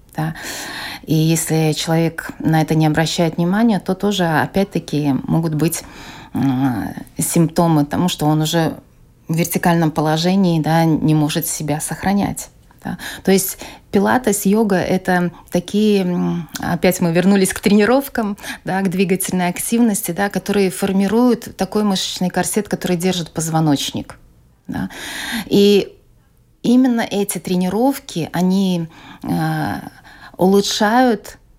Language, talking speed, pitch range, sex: Russian, 100 wpm, 160-195 Hz, female